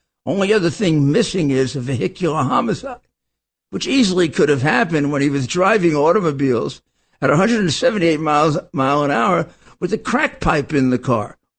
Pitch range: 140-225 Hz